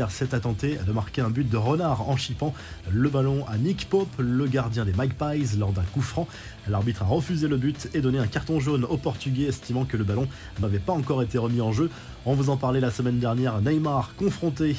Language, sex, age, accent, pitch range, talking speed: French, male, 20-39, French, 110-140 Hz, 230 wpm